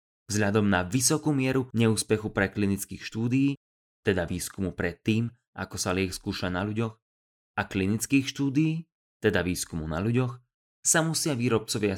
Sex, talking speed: male, 135 wpm